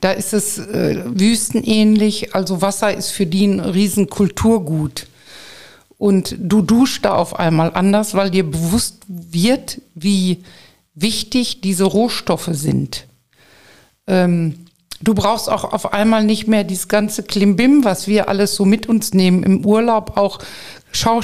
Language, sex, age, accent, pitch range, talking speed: German, female, 50-69, German, 185-215 Hz, 140 wpm